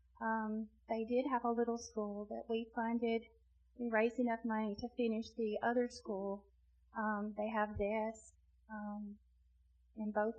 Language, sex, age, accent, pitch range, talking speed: English, female, 30-49, American, 205-225 Hz, 150 wpm